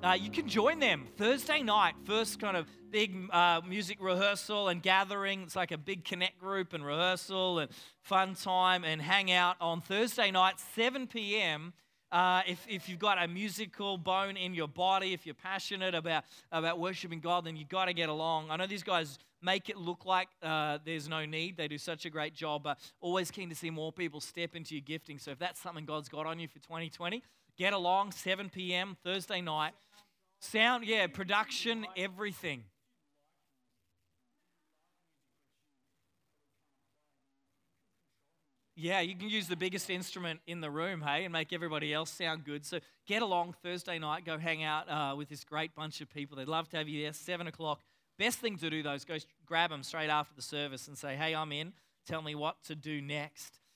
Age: 30-49